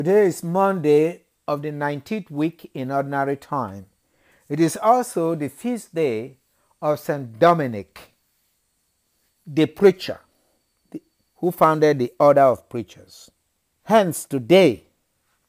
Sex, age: male, 60-79